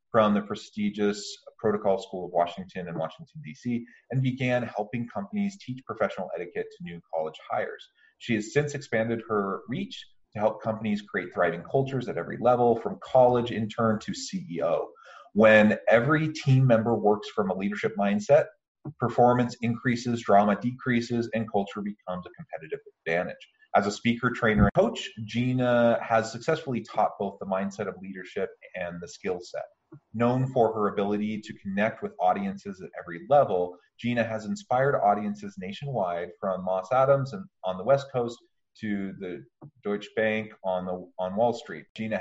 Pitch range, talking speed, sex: 100-130 Hz, 160 wpm, male